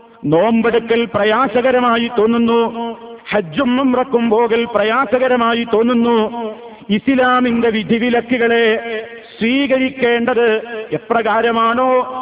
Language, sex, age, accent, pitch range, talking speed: Malayalam, male, 50-69, native, 230-255 Hz, 60 wpm